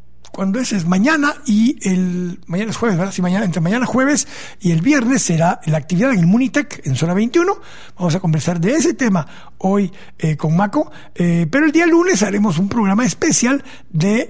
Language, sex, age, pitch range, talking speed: Spanish, male, 60-79, 160-225 Hz, 200 wpm